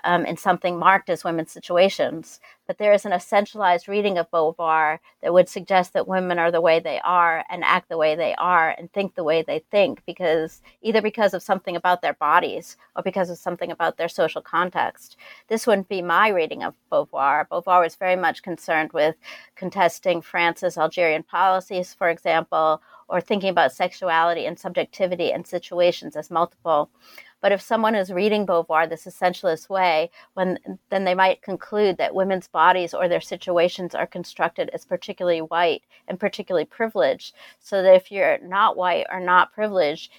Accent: American